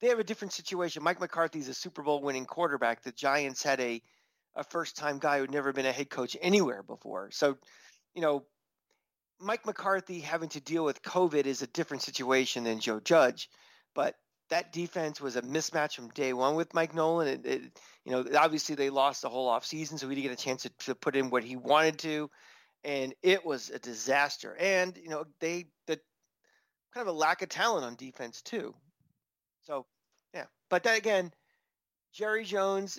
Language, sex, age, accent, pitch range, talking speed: English, male, 40-59, American, 135-170 Hz, 195 wpm